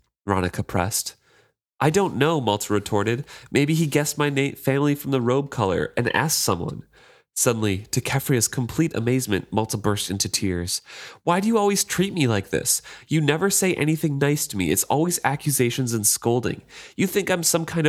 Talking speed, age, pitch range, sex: 180 wpm, 30-49, 105-150 Hz, male